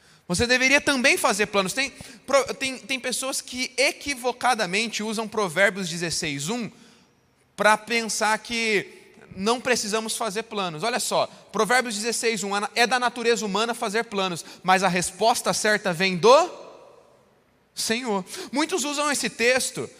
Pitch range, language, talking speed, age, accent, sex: 210-255 Hz, Portuguese, 125 wpm, 20-39, Brazilian, male